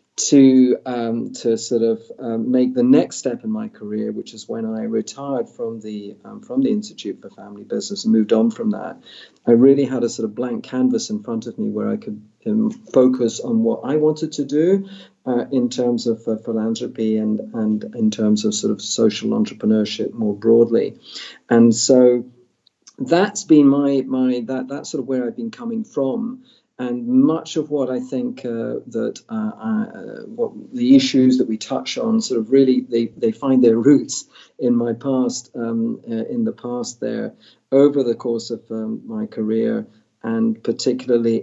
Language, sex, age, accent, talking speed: English, male, 50-69, British, 190 wpm